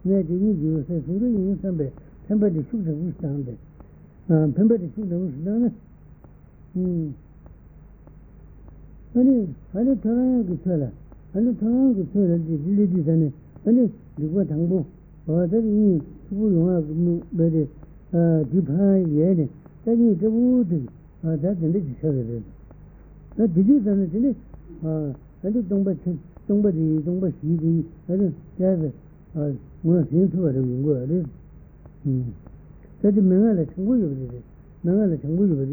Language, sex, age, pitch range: Italian, male, 60-79, 155-200 Hz